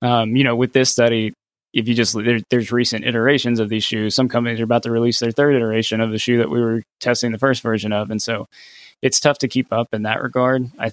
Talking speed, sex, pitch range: 255 wpm, male, 105-115 Hz